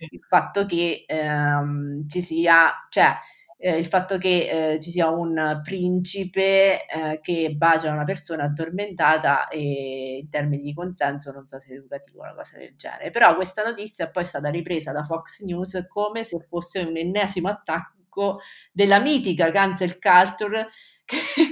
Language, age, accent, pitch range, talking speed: Italian, 30-49, native, 160-200 Hz, 165 wpm